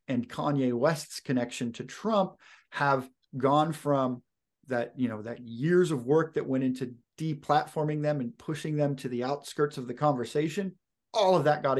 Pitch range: 125-145 Hz